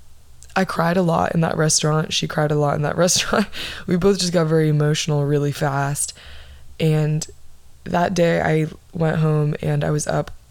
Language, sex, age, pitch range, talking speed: English, female, 20-39, 145-170 Hz, 185 wpm